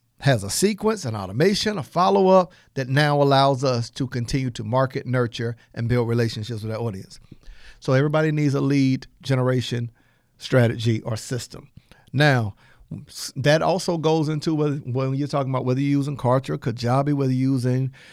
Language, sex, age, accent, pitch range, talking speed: English, male, 50-69, American, 120-155 Hz, 160 wpm